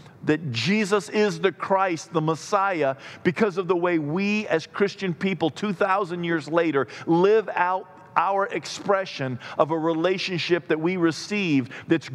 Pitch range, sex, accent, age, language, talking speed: 135-165 Hz, male, American, 50-69, English, 145 wpm